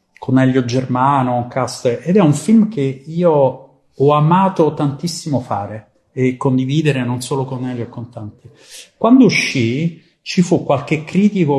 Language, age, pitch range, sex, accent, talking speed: English, 40-59, 130-170 Hz, male, Italian, 155 wpm